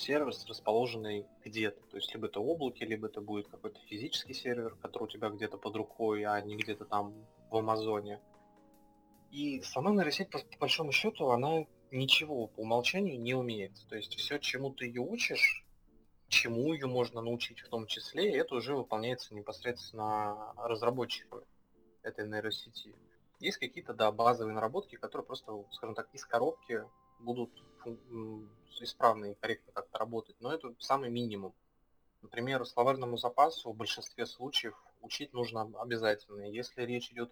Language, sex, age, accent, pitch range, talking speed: Russian, male, 20-39, native, 105-125 Hz, 150 wpm